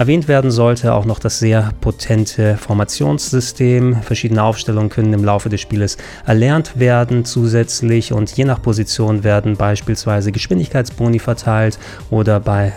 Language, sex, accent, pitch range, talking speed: German, male, German, 110-125 Hz, 135 wpm